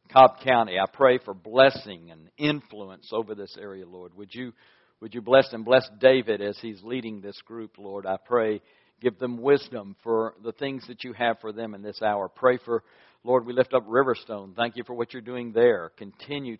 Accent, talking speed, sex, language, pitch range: American, 205 wpm, male, English, 105-125 Hz